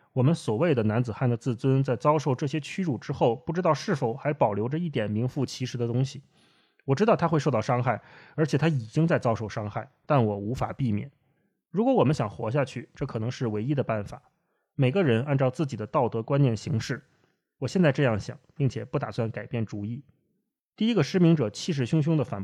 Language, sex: Chinese, male